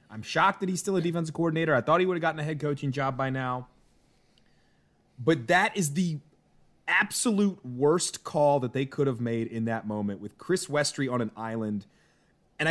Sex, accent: male, American